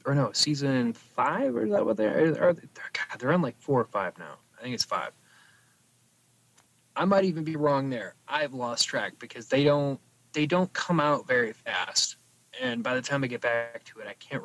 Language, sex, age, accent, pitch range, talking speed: English, male, 20-39, American, 120-150 Hz, 230 wpm